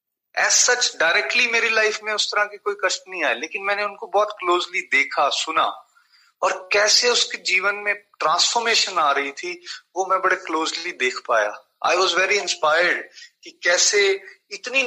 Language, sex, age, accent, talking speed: Hindi, male, 30-49, native, 105 wpm